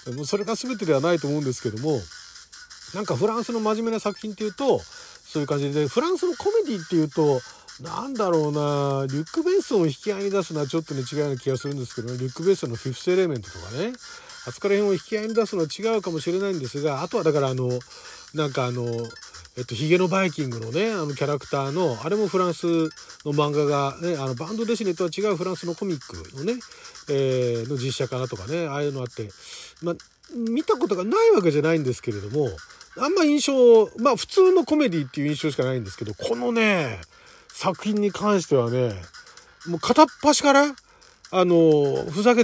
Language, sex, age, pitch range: Japanese, male, 40-59, 145-225 Hz